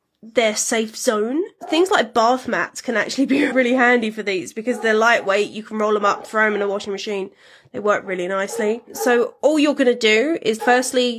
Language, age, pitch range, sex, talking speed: English, 20-39, 215-260 Hz, female, 210 wpm